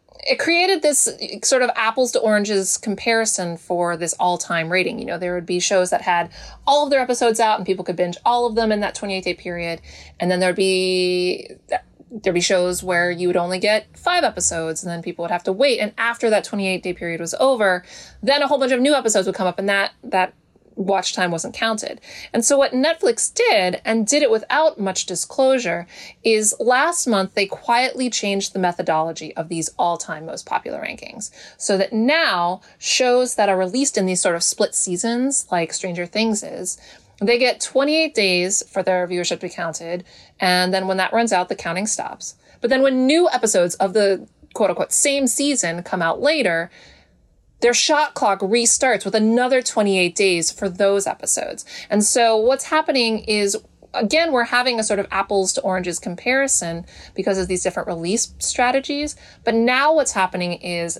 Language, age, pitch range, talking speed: English, 20-39, 180-245 Hz, 195 wpm